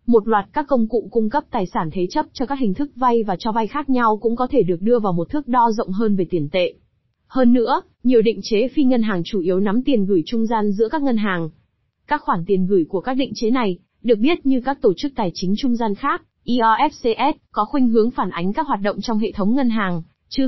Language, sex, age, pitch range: Vietnamese, female, 20-39, 200-255 Hz